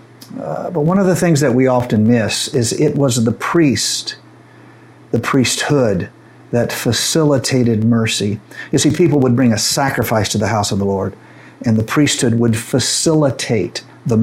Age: 50-69